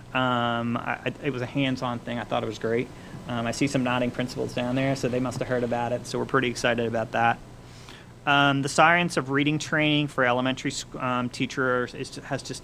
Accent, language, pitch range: American, English, 120-135 Hz